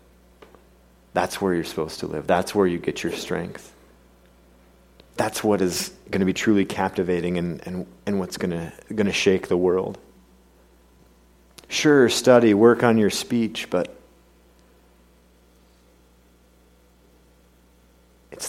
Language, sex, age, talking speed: English, male, 40-59, 125 wpm